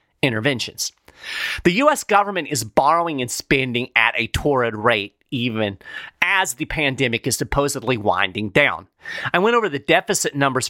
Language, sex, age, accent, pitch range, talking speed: English, male, 40-59, American, 130-170 Hz, 145 wpm